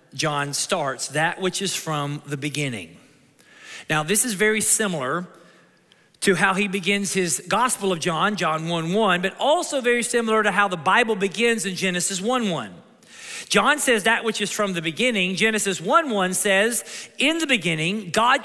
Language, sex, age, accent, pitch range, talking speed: English, male, 40-59, American, 180-250 Hz, 170 wpm